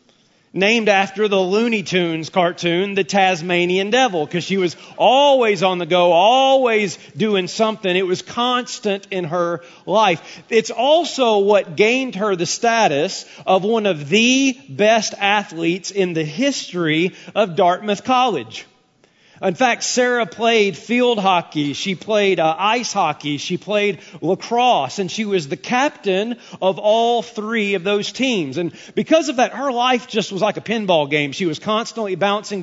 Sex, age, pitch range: male, 40-59, 180-235 Hz